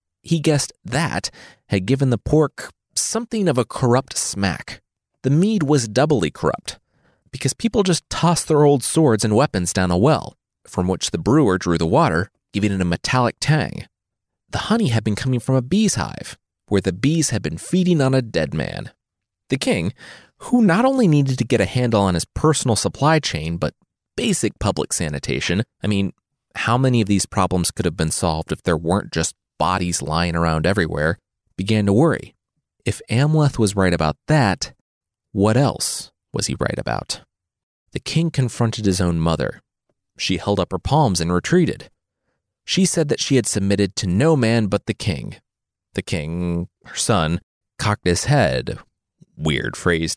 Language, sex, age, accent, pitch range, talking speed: English, male, 30-49, American, 90-140 Hz, 175 wpm